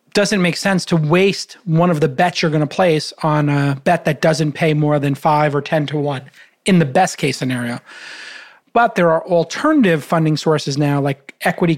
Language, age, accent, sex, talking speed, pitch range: English, 30-49, American, male, 200 wpm, 155-190 Hz